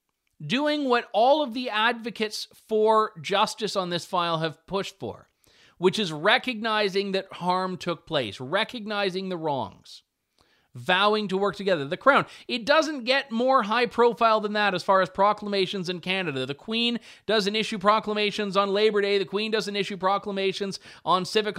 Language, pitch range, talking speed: English, 155-215 Hz, 165 wpm